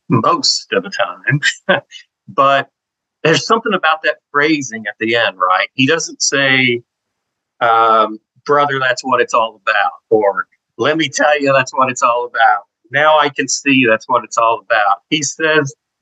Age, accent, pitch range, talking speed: 50-69, American, 110-160 Hz, 170 wpm